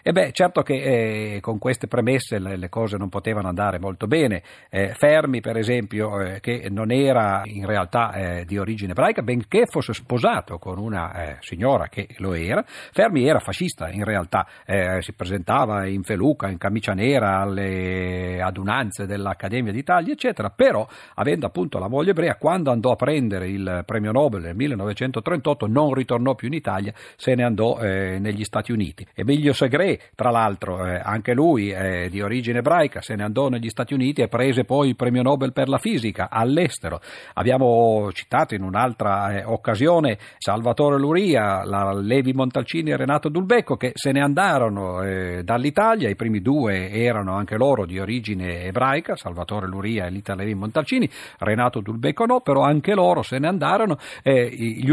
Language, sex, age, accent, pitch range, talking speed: Italian, male, 50-69, native, 100-135 Hz, 175 wpm